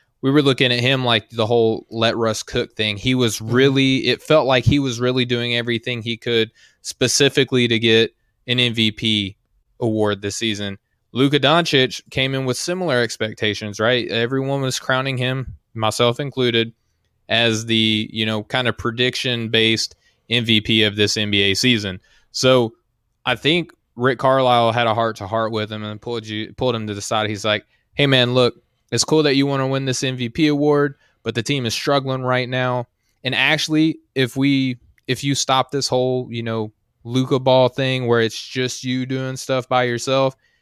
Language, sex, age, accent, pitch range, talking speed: English, male, 20-39, American, 110-130 Hz, 185 wpm